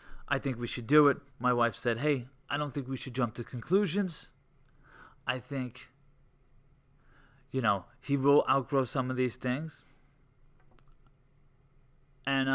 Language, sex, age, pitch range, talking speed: English, male, 30-49, 115-140 Hz, 145 wpm